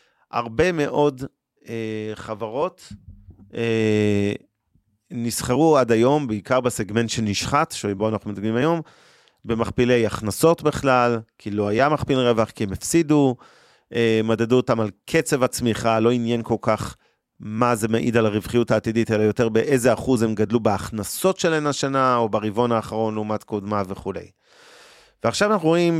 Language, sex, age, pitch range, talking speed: Hebrew, male, 30-49, 110-135 Hz, 140 wpm